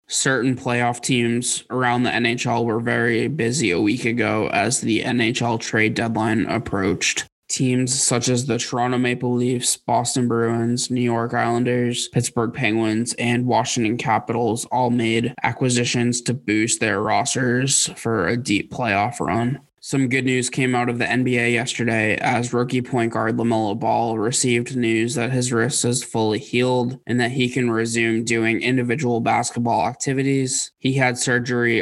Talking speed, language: 155 wpm, English